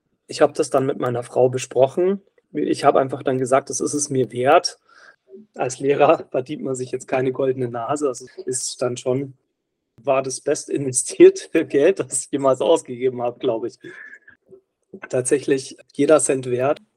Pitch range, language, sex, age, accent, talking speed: 135-175 Hz, German, male, 40-59, German, 165 wpm